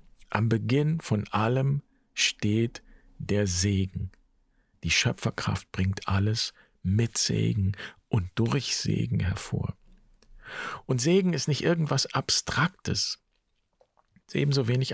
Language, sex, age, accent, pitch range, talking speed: German, male, 50-69, German, 95-135 Hz, 100 wpm